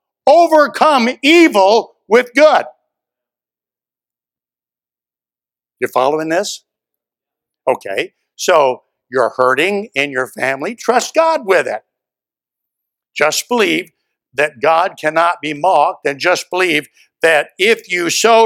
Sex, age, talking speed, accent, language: male, 60-79, 105 wpm, American, English